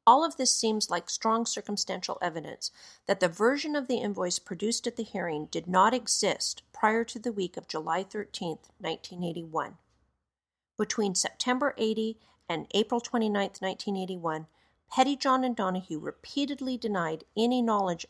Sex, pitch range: female, 180-245 Hz